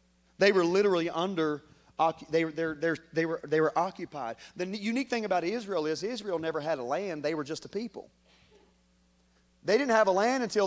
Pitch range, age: 165-215 Hz, 40-59